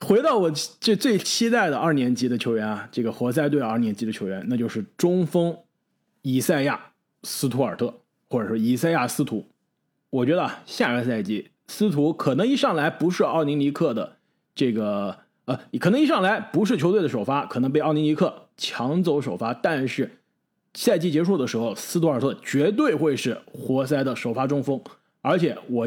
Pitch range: 125-195 Hz